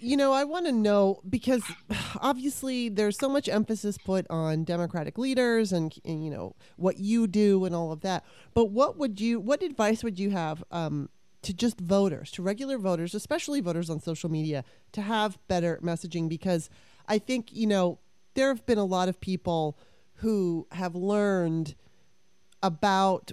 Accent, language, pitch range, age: American, English, 175-225 Hz, 30-49